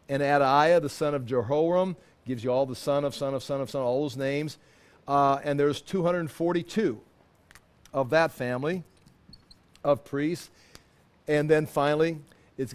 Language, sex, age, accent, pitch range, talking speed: English, male, 50-69, American, 140-170 Hz, 155 wpm